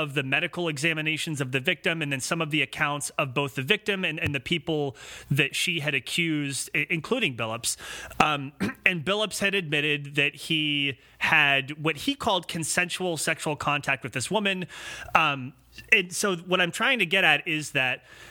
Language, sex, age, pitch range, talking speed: English, male, 30-49, 145-180 Hz, 180 wpm